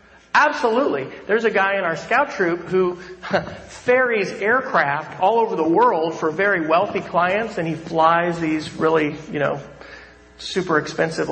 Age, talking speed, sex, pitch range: 40-59, 150 wpm, male, 150-190 Hz